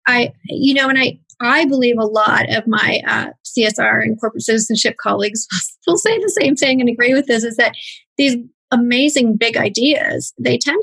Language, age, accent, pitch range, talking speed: English, 30-49, American, 220-270 Hz, 190 wpm